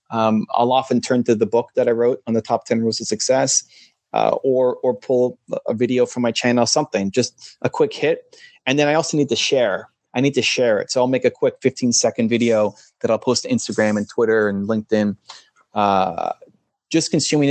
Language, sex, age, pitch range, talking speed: English, male, 30-49, 120-160 Hz, 215 wpm